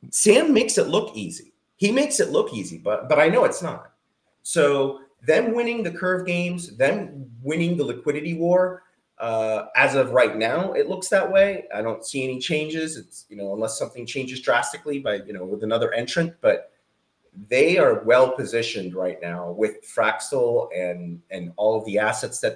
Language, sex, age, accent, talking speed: English, male, 30-49, American, 185 wpm